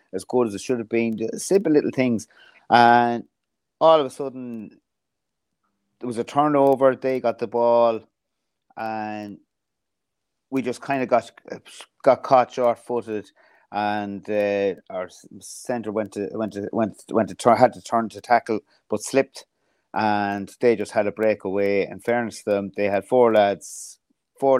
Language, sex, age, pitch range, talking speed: English, male, 30-49, 105-125 Hz, 160 wpm